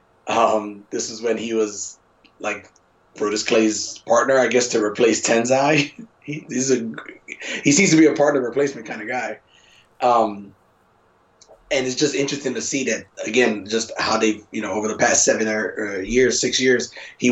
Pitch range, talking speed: 110-125 Hz, 175 wpm